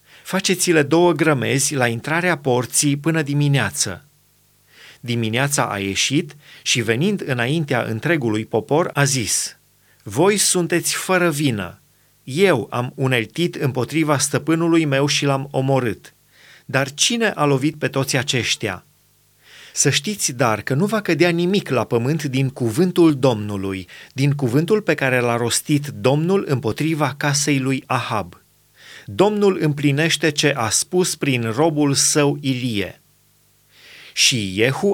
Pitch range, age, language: 125-165 Hz, 30-49, Romanian